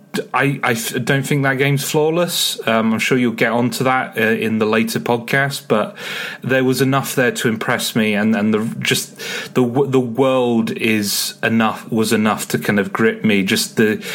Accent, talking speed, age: British, 190 wpm, 30-49